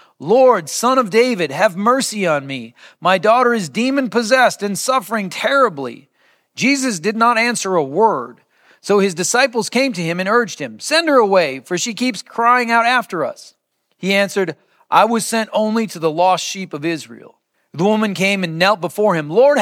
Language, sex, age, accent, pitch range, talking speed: English, male, 40-59, American, 155-215 Hz, 185 wpm